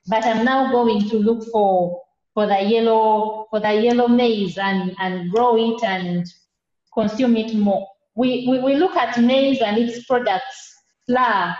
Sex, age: female, 30-49